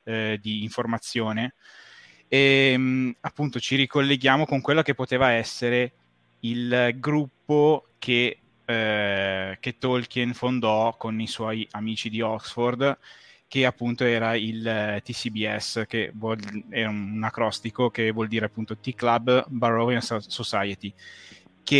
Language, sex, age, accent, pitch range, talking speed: Italian, male, 20-39, native, 110-130 Hz, 115 wpm